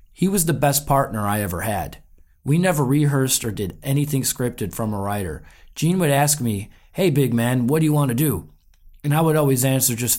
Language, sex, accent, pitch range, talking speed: English, male, American, 105-145 Hz, 220 wpm